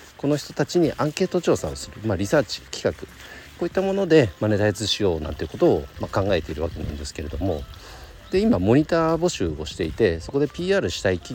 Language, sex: Japanese, male